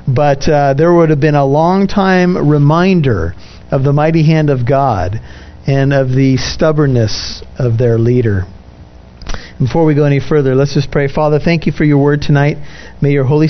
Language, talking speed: English, 180 wpm